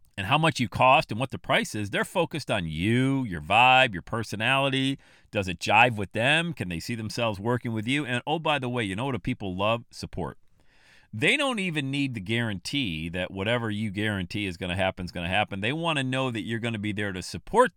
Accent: American